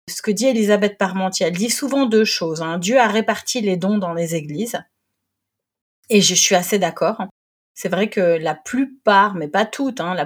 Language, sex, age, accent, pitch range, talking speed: French, female, 30-49, French, 175-225 Hz, 200 wpm